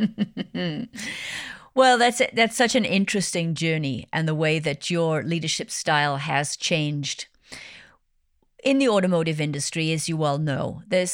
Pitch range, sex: 160-215 Hz, female